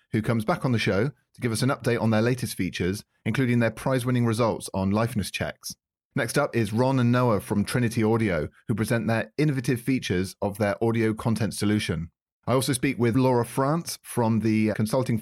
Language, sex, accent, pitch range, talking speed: English, male, British, 105-130 Hz, 195 wpm